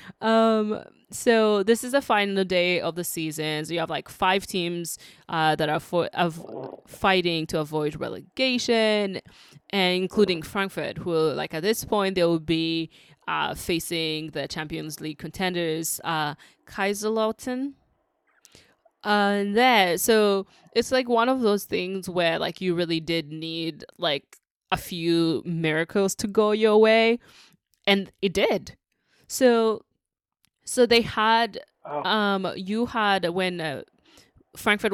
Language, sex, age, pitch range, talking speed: English, female, 20-39, 165-205 Hz, 140 wpm